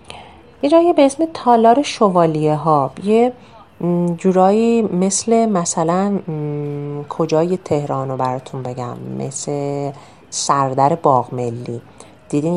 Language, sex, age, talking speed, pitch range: Persian, female, 30-49, 100 wpm, 140-180 Hz